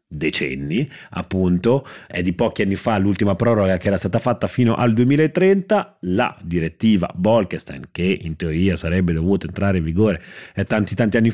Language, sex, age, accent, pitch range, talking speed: Italian, male, 30-49, native, 85-110 Hz, 160 wpm